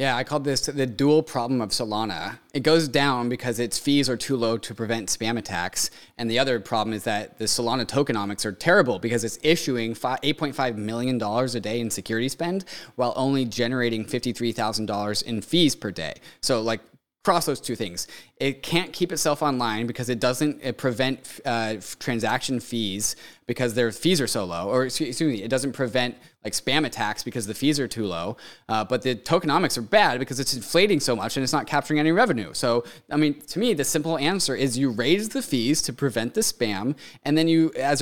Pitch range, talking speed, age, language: 115-145 Hz, 205 wpm, 20-39, English